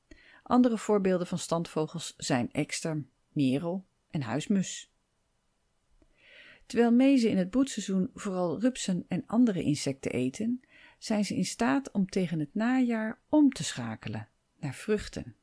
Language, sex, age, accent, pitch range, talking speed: Dutch, female, 40-59, Dutch, 150-230 Hz, 130 wpm